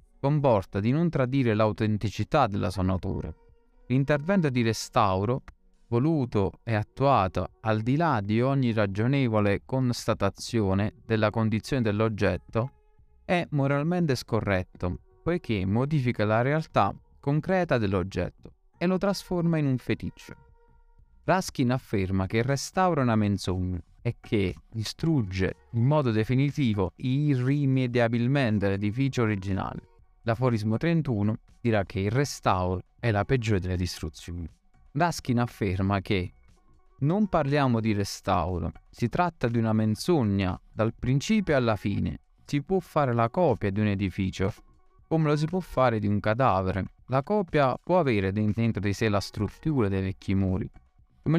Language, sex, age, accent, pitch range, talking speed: Italian, male, 20-39, native, 100-140 Hz, 130 wpm